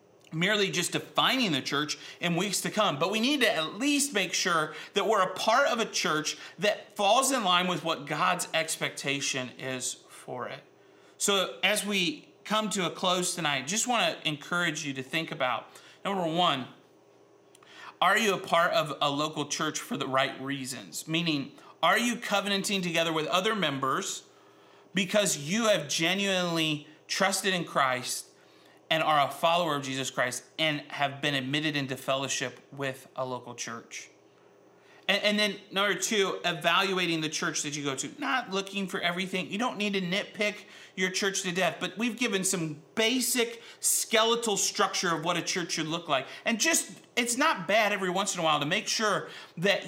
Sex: male